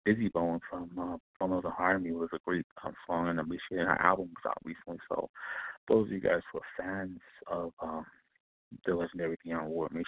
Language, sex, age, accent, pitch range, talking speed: English, male, 30-49, American, 85-95 Hz, 230 wpm